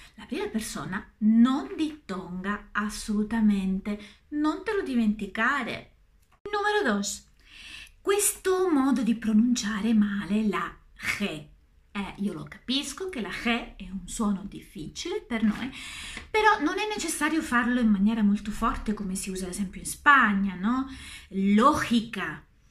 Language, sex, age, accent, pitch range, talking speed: Italian, female, 30-49, native, 200-300 Hz, 130 wpm